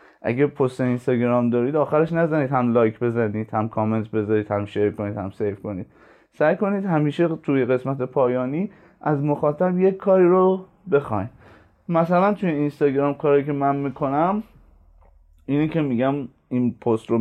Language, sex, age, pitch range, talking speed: Persian, male, 30-49, 115-135 Hz, 150 wpm